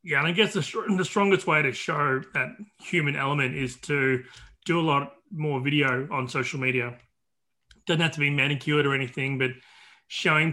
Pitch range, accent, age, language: 130-160 Hz, Australian, 30-49, English